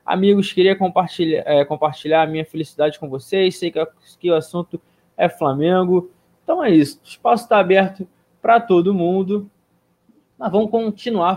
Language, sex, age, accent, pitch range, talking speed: Portuguese, male, 20-39, Brazilian, 150-200 Hz, 160 wpm